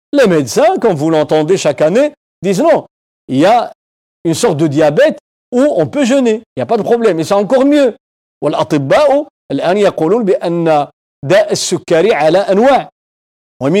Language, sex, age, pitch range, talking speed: French, male, 50-69, 165-255 Hz, 195 wpm